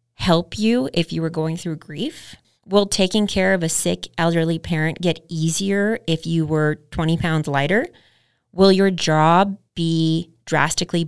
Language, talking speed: English, 155 wpm